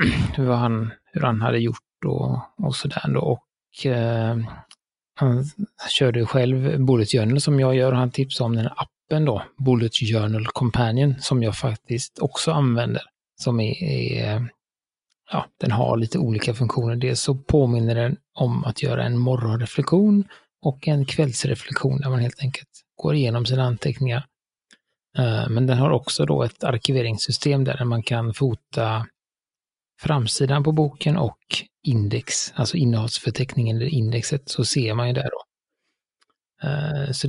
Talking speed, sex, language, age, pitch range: 150 wpm, male, Swedish, 30-49, 115-140 Hz